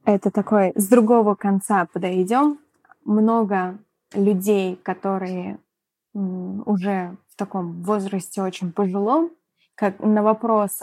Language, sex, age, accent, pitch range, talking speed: Russian, female, 20-39, native, 185-225 Hz, 95 wpm